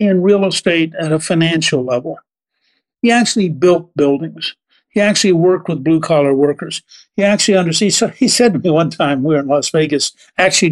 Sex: male